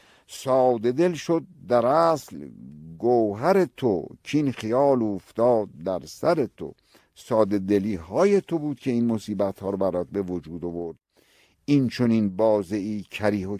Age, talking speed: 60-79, 150 wpm